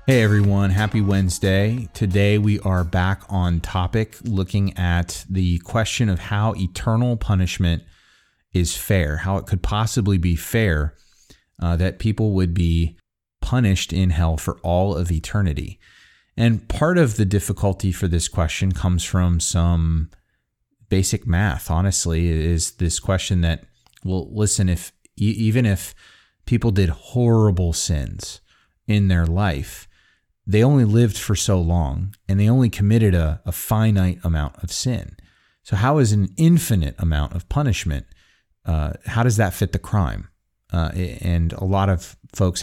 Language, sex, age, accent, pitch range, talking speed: English, male, 30-49, American, 85-105 Hz, 150 wpm